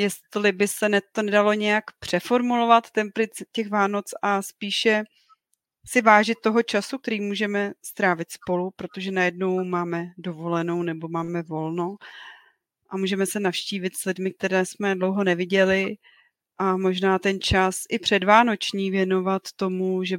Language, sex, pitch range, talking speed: Czech, female, 180-205 Hz, 135 wpm